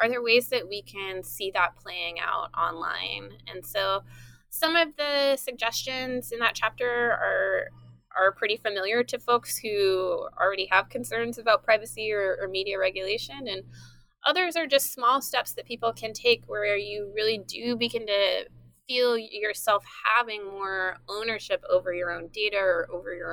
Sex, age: female, 20-39